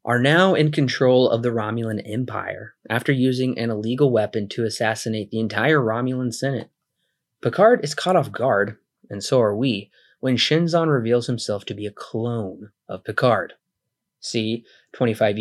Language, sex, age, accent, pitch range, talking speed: English, male, 20-39, American, 110-140 Hz, 155 wpm